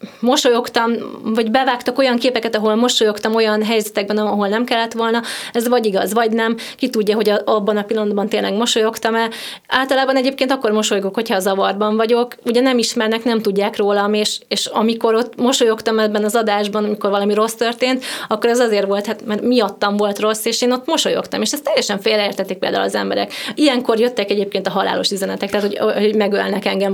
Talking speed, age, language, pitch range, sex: 185 wpm, 20-39, Hungarian, 205-240 Hz, female